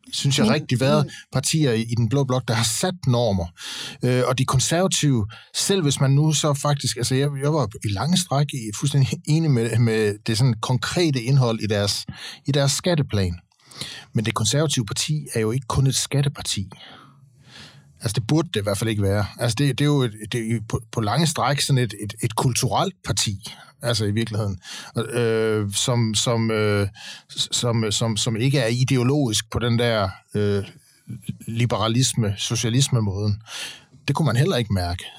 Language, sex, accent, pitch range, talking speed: Danish, male, native, 115-140 Hz, 180 wpm